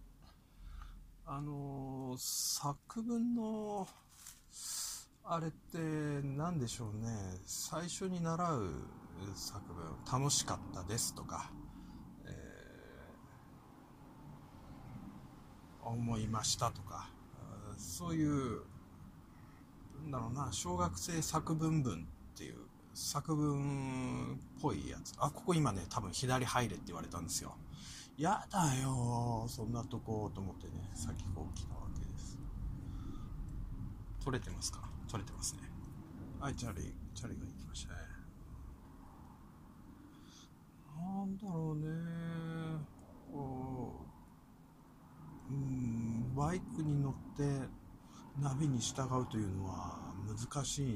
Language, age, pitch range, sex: Japanese, 50-69, 90-145 Hz, male